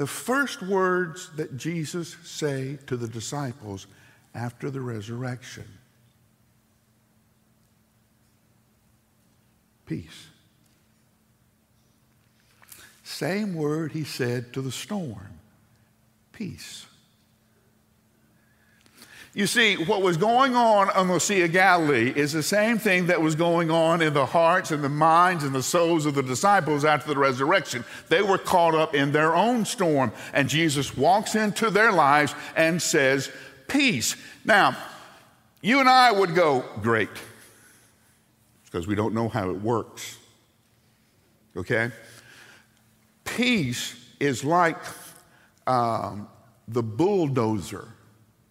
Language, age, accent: English, 60-79, American